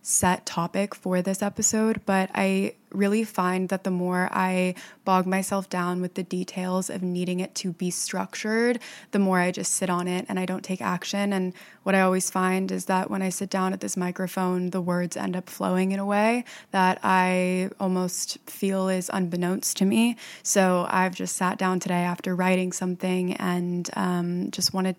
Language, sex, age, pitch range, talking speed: English, female, 20-39, 185-195 Hz, 190 wpm